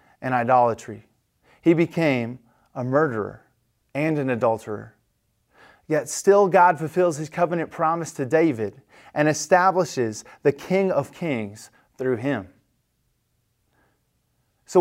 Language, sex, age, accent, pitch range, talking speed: English, male, 30-49, American, 130-185 Hz, 110 wpm